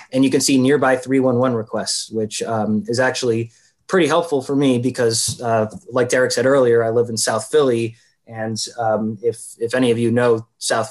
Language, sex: English, male